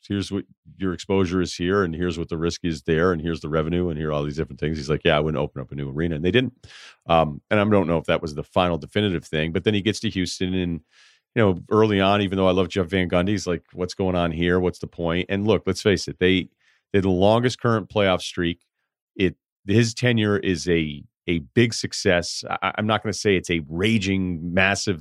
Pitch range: 80-95 Hz